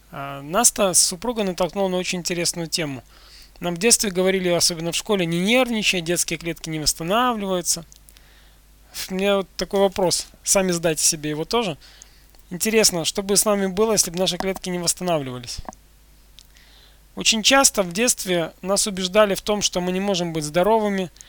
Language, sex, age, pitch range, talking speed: Russian, male, 20-39, 160-195 Hz, 160 wpm